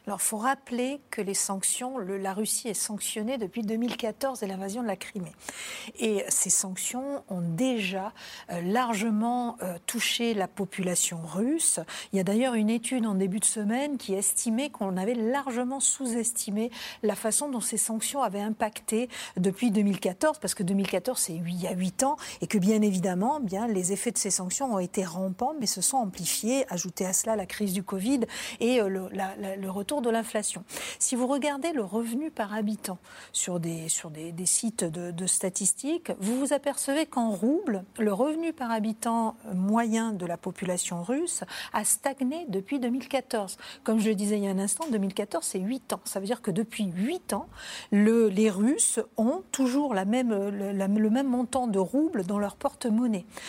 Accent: French